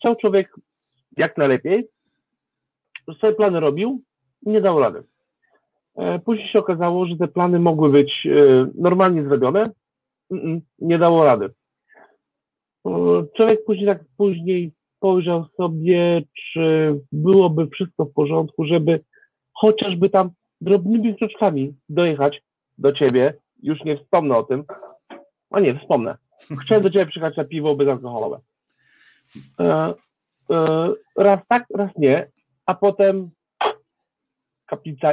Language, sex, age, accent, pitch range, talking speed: Polish, male, 50-69, native, 145-195 Hz, 115 wpm